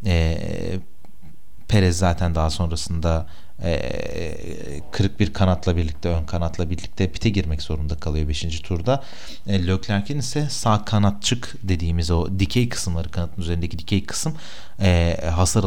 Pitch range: 85-110 Hz